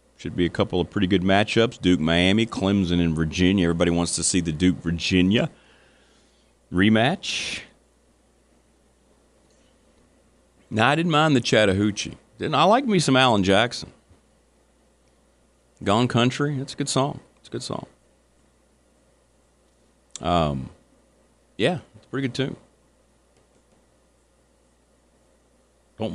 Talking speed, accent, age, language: 115 wpm, American, 40-59, English